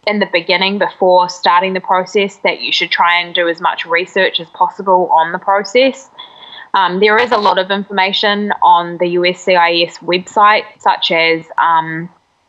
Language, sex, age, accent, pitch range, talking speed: English, female, 20-39, Australian, 170-190 Hz, 170 wpm